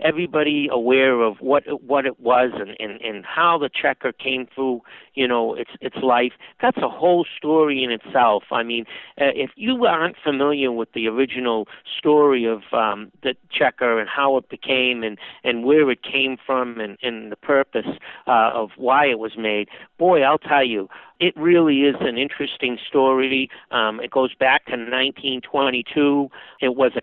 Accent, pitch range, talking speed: American, 115-145 Hz, 170 wpm